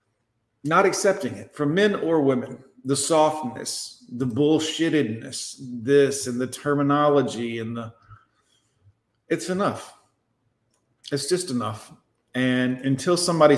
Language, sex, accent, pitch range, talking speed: English, male, American, 120-155 Hz, 110 wpm